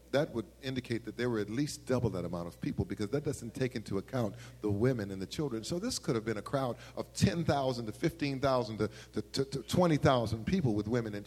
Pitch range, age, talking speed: 125-165 Hz, 50-69, 250 wpm